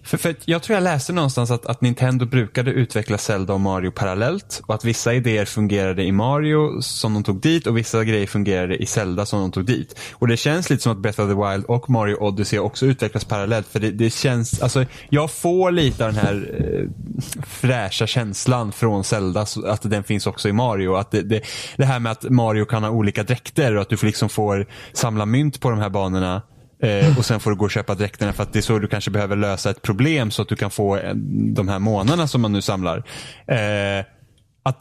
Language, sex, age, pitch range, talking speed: Swedish, male, 10-29, 105-130 Hz, 225 wpm